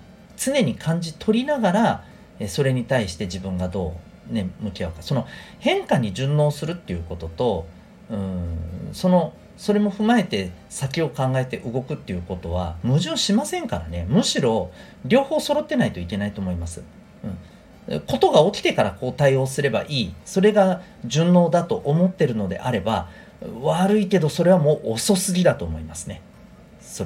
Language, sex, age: Japanese, male, 40-59